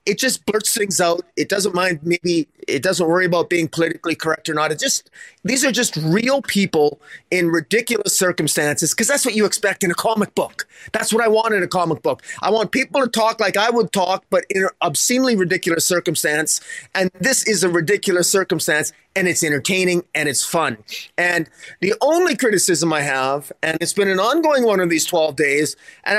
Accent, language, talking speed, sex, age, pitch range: American, English, 210 wpm, male, 30-49, 155-200 Hz